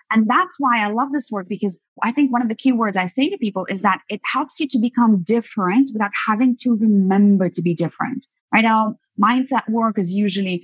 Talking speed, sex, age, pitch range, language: 225 wpm, female, 20-39, 185-245 Hz, English